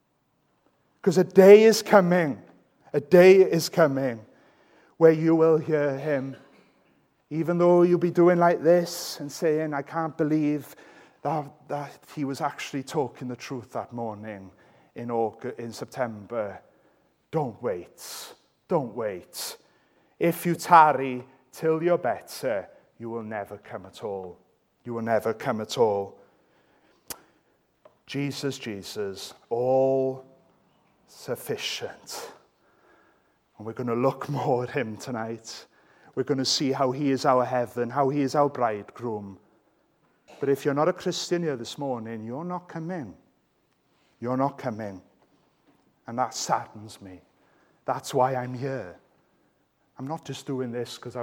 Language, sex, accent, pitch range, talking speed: English, male, British, 120-160 Hz, 135 wpm